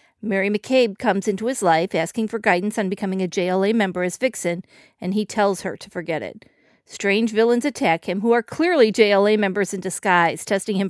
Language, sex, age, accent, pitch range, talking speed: English, female, 40-59, American, 185-220 Hz, 200 wpm